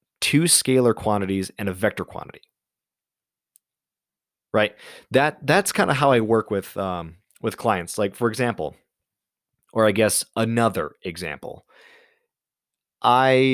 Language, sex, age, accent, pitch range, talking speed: English, male, 20-39, American, 105-130 Hz, 125 wpm